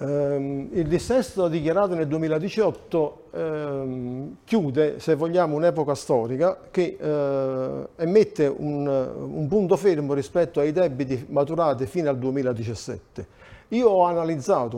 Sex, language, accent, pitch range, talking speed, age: male, Italian, native, 135-180 Hz, 100 wpm, 50-69